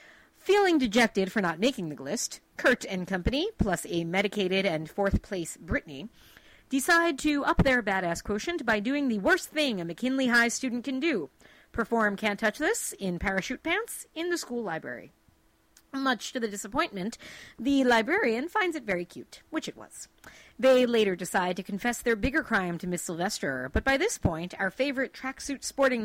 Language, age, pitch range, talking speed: English, 40-59, 180-265 Hz, 175 wpm